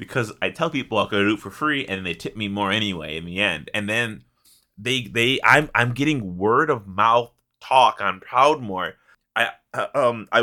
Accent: American